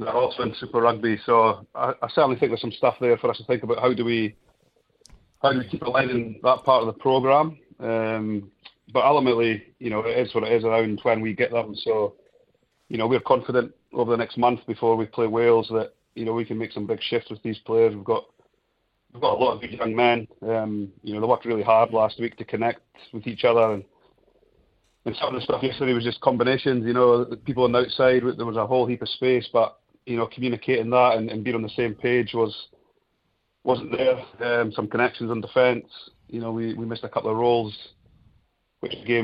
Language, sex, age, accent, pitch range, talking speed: English, male, 30-49, British, 110-125 Hz, 230 wpm